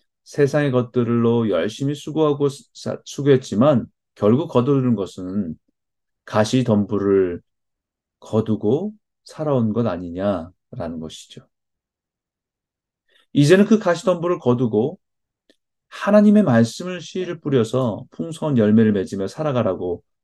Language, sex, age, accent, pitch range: Korean, male, 40-59, native, 105-140 Hz